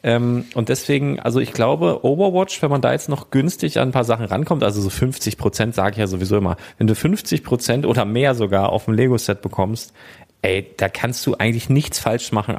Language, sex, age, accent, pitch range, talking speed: German, male, 40-59, German, 105-130 Hz, 220 wpm